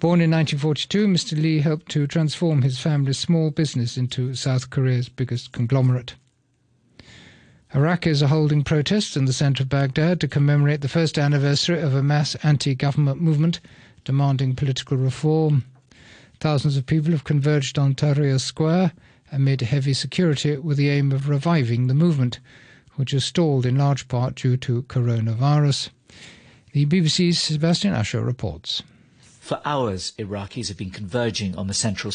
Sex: male